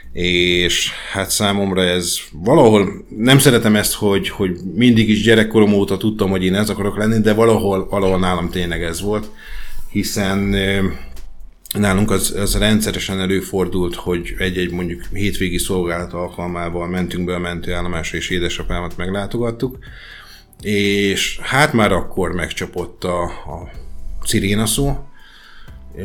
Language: Hungarian